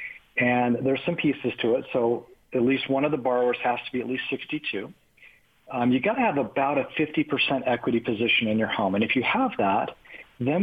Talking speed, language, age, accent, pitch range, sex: 215 wpm, English, 40-59, American, 115-140 Hz, male